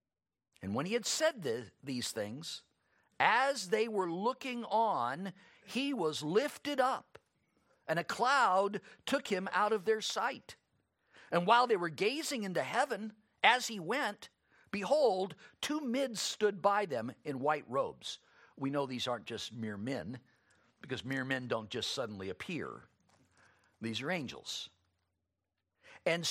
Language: English